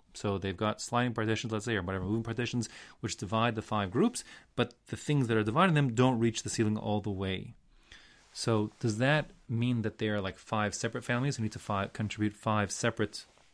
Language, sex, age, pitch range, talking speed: English, male, 30-49, 100-125 Hz, 210 wpm